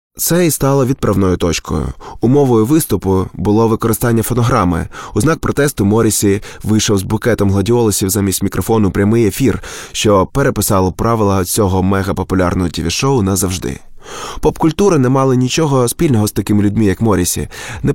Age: 20-39